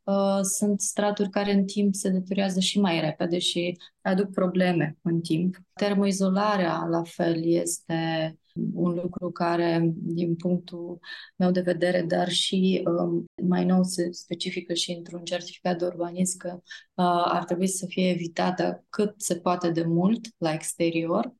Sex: female